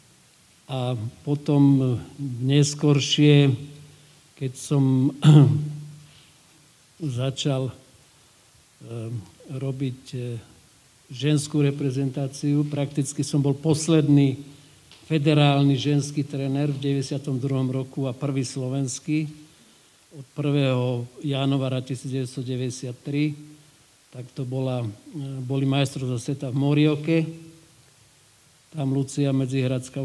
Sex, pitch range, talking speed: male, 130-145 Hz, 75 wpm